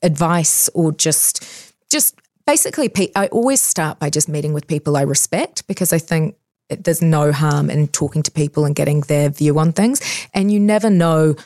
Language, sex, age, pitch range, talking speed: English, female, 30-49, 150-180 Hz, 185 wpm